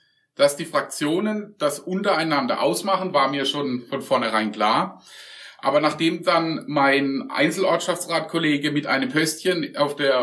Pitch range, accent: 130-165 Hz, German